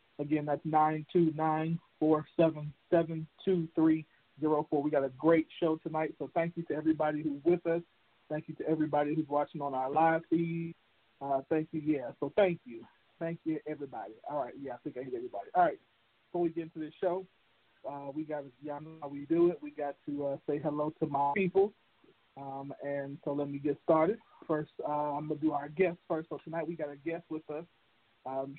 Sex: male